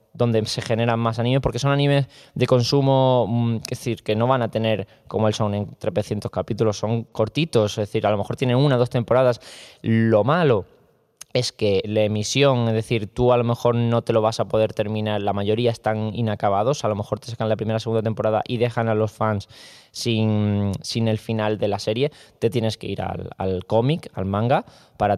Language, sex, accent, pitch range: Spanish, male, Spanish, 105-120 Hz